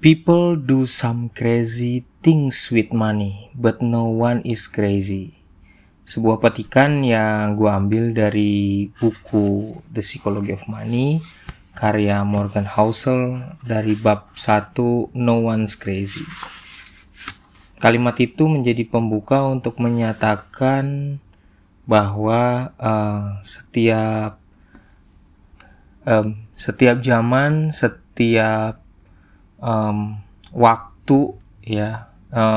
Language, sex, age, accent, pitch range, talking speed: Indonesian, male, 20-39, native, 100-120 Hz, 90 wpm